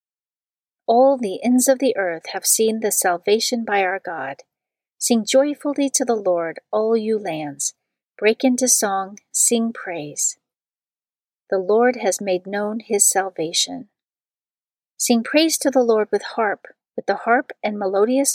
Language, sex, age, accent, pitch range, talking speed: English, female, 40-59, American, 195-245 Hz, 145 wpm